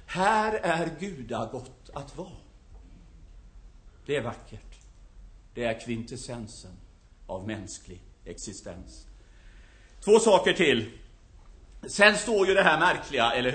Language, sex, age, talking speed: Swedish, male, 50-69, 105 wpm